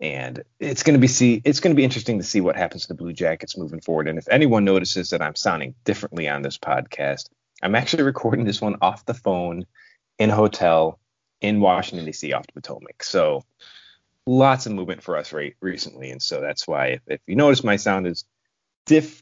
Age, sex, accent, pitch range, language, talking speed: 30-49, male, American, 90-120 Hz, English, 215 wpm